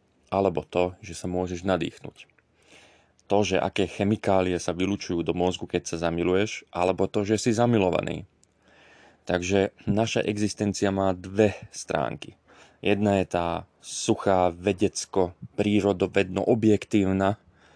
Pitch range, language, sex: 90-105 Hz, Slovak, male